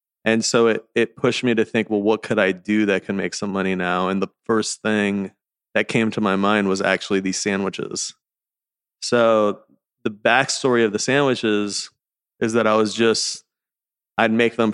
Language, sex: English, male